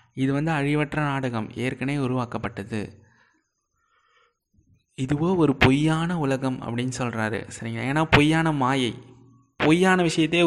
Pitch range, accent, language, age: 120-155 Hz, native, Tamil, 20-39